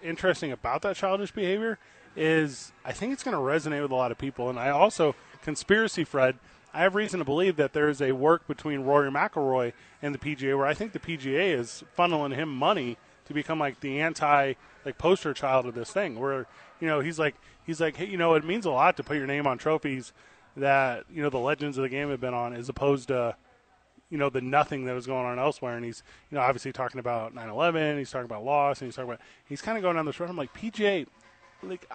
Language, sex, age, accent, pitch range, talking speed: English, male, 20-39, American, 135-180 Hz, 240 wpm